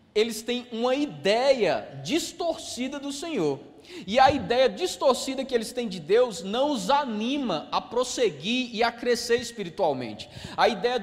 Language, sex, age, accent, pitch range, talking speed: Portuguese, male, 20-39, Brazilian, 220-275 Hz, 145 wpm